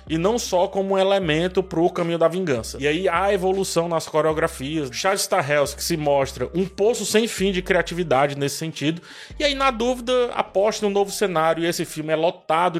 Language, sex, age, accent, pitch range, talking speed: Portuguese, male, 20-39, Brazilian, 140-185 Hz, 195 wpm